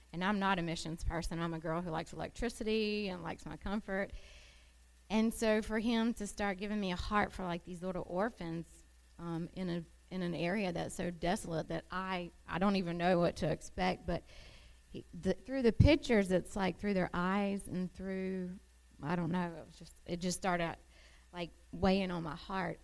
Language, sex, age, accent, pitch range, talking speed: English, female, 30-49, American, 160-190 Hz, 200 wpm